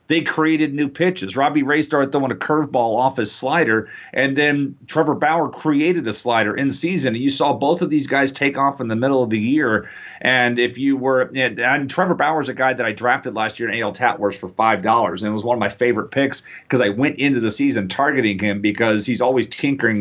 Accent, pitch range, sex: American, 115-140 Hz, male